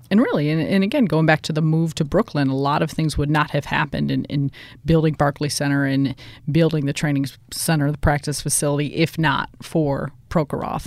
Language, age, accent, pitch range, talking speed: English, 30-49, American, 145-170 Hz, 200 wpm